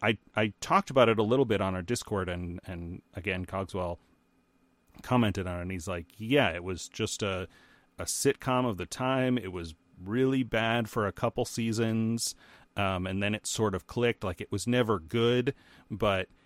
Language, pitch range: English, 90-110 Hz